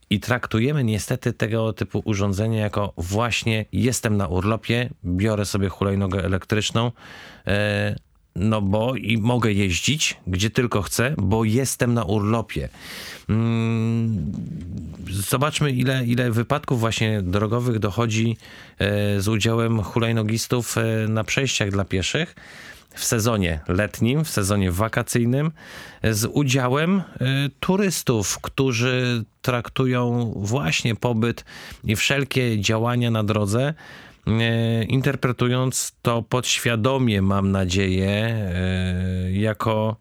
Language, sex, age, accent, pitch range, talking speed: Polish, male, 40-59, native, 100-120 Hz, 95 wpm